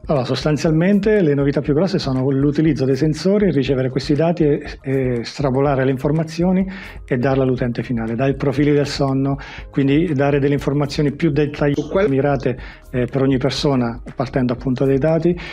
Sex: male